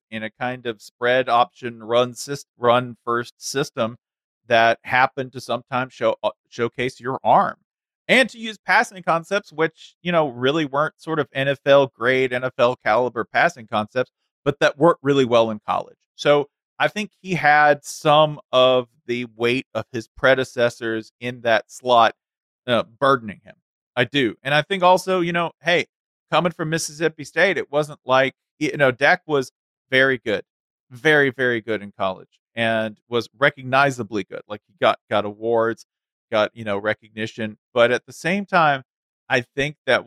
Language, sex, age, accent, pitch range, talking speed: English, male, 40-59, American, 120-155 Hz, 165 wpm